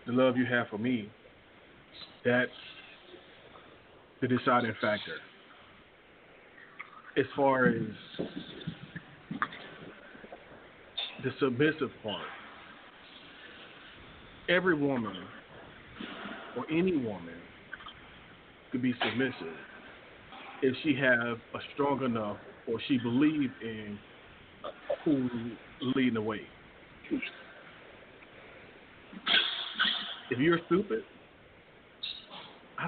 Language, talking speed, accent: English, 75 wpm, American